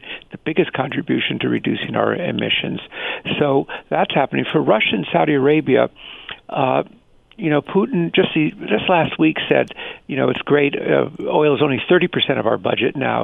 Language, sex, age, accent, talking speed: English, male, 60-79, American, 185 wpm